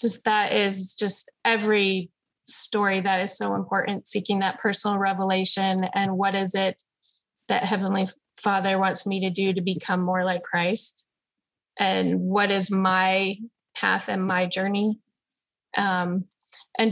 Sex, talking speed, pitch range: female, 140 wpm, 190-215 Hz